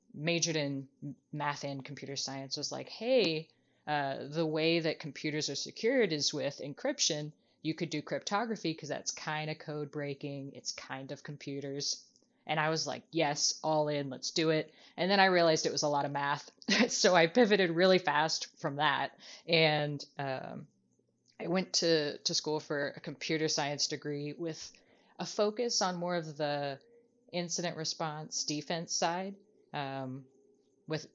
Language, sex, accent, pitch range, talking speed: English, female, American, 145-170 Hz, 165 wpm